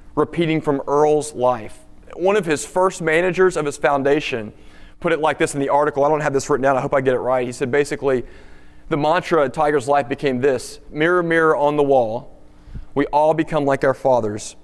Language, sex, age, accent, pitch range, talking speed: English, male, 30-49, American, 115-160 Hz, 215 wpm